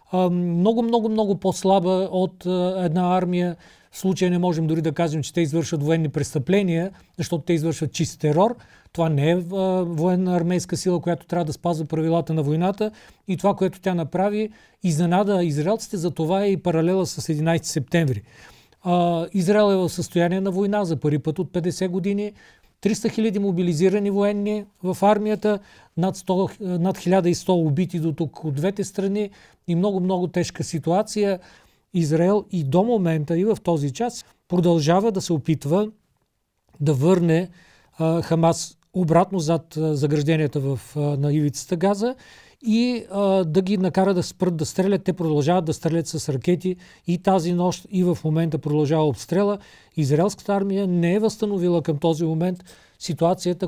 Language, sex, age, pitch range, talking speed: Bulgarian, male, 40-59, 160-190 Hz, 160 wpm